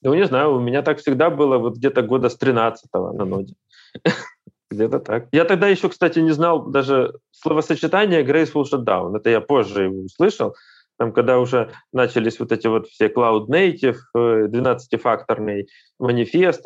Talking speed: 155 wpm